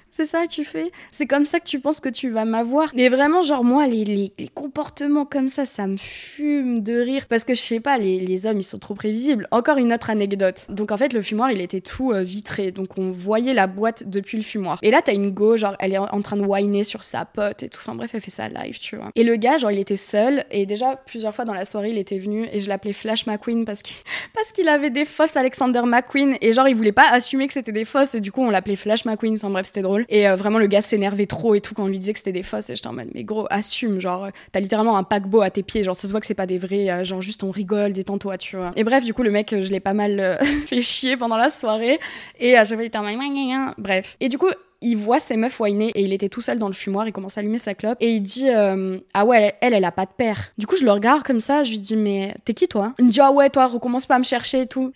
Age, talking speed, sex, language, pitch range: 20-39, 300 wpm, female, French, 200-255 Hz